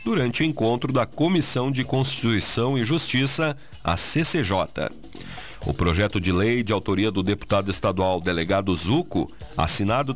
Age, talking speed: 40-59, 135 wpm